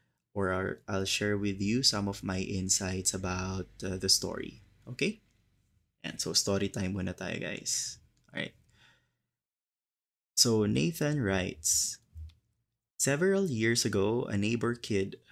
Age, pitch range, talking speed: 20-39, 100-120 Hz, 120 wpm